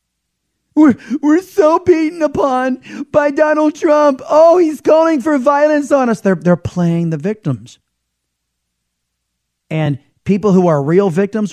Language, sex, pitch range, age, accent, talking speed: English, male, 135-200 Hz, 30-49, American, 135 wpm